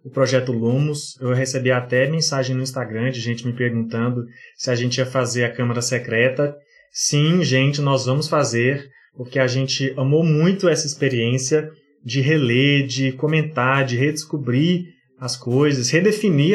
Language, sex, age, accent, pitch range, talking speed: Portuguese, male, 20-39, Brazilian, 130-155 Hz, 150 wpm